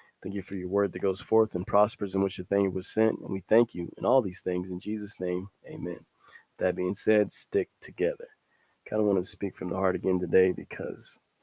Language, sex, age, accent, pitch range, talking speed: English, male, 20-39, American, 95-105 Hz, 235 wpm